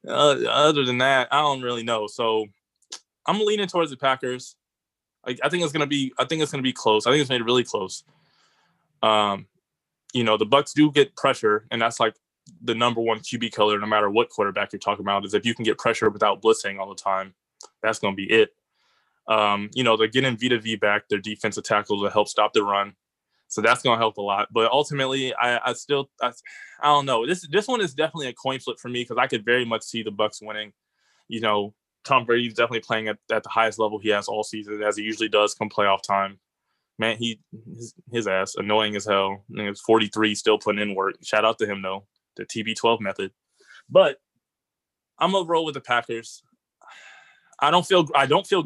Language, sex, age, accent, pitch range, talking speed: English, male, 20-39, American, 105-135 Hz, 230 wpm